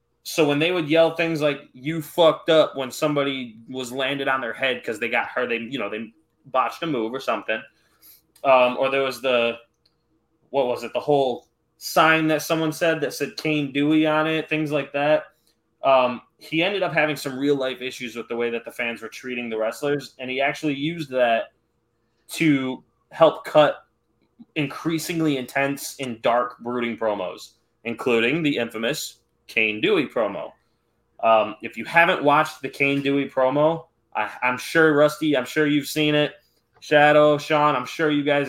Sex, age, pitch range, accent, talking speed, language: male, 20-39, 120-155 Hz, American, 180 wpm, English